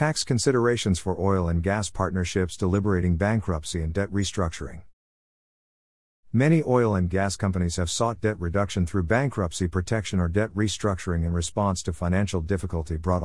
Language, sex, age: English, male, 50-69